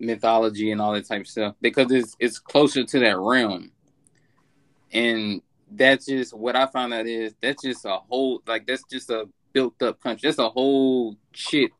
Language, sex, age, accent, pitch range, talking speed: English, male, 20-39, American, 115-135 Hz, 190 wpm